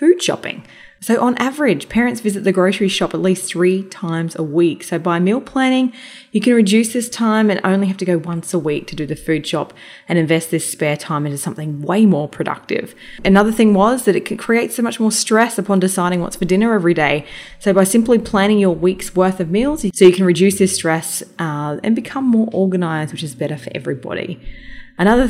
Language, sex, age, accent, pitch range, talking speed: English, female, 20-39, Australian, 165-210 Hz, 220 wpm